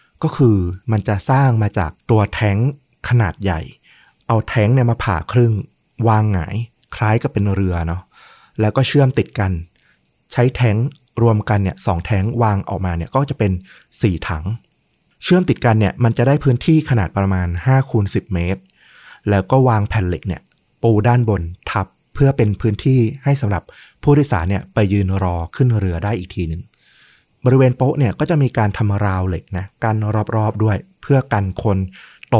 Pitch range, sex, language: 95-120 Hz, male, Thai